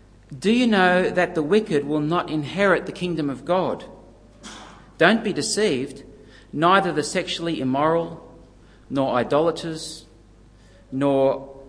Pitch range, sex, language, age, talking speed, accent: 115-160 Hz, male, English, 50-69, 120 wpm, Australian